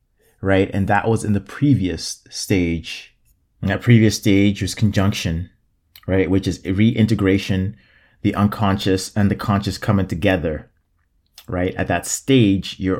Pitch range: 90-105 Hz